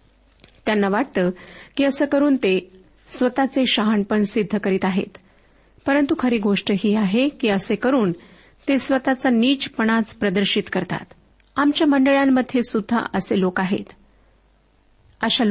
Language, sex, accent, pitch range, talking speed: Marathi, female, native, 200-260 Hz, 120 wpm